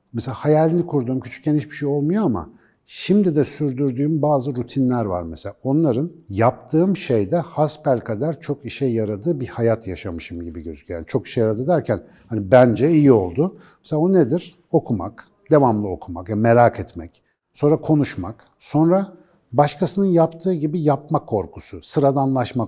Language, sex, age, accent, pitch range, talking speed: Turkish, male, 60-79, native, 110-160 Hz, 145 wpm